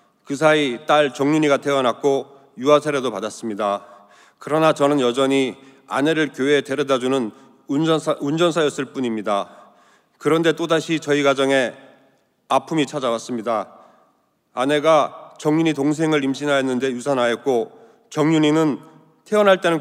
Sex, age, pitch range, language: male, 30-49, 135-160 Hz, Korean